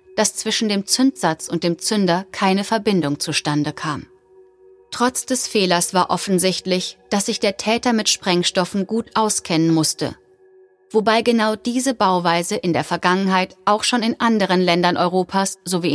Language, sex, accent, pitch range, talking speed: German, female, German, 170-220 Hz, 145 wpm